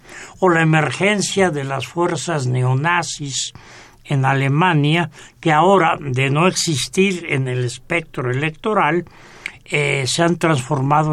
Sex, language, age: male, Spanish, 60-79